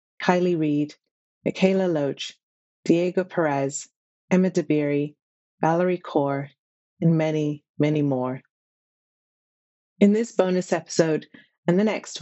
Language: English